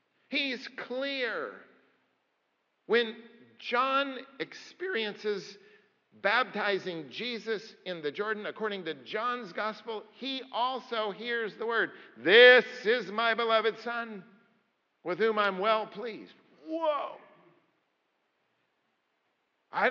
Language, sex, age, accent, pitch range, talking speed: English, male, 50-69, American, 195-255 Hz, 95 wpm